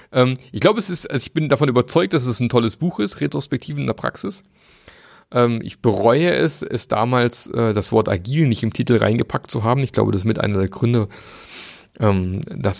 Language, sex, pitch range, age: German, male, 105-130 Hz, 30-49